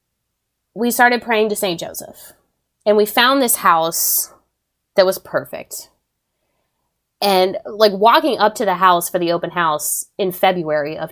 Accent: American